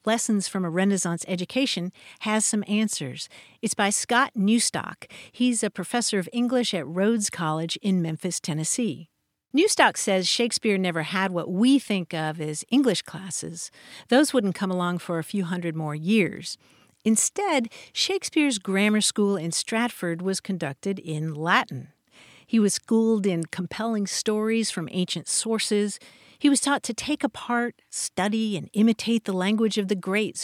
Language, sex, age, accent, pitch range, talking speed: English, female, 50-69, American, 180-235 Hz, 155 wpm